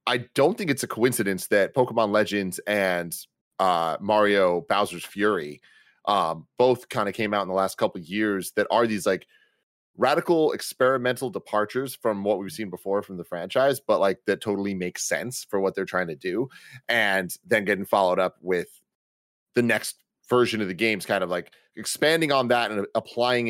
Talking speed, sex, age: 185 wpm, male, 30-49